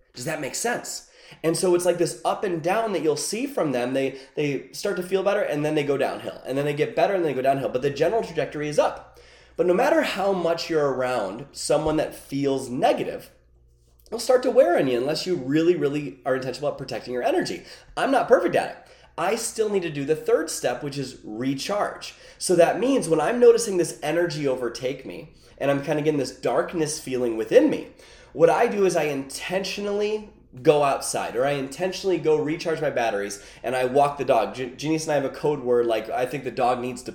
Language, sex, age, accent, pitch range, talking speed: English, male, 20-39, American, 140-185 Hz, 230 wpm